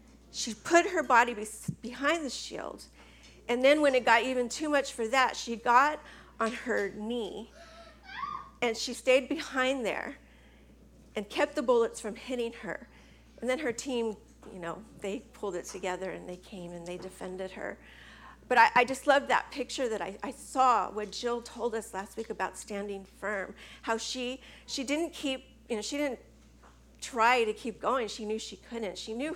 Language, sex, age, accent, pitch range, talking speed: English, female, 40-59, American, 220-280 Hz, 185 wpm